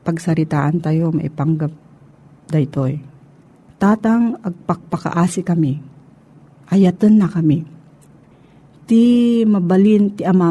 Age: 40-59